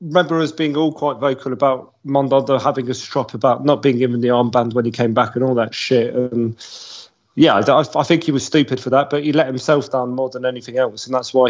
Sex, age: male, 30-49